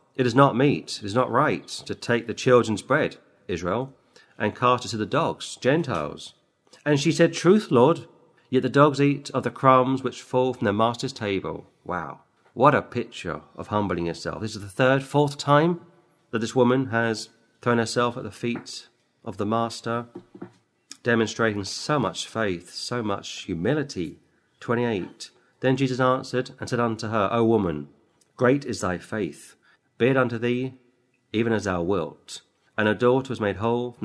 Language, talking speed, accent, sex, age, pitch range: English, 175 wpm, British, male, 40-59, 105-130 Hz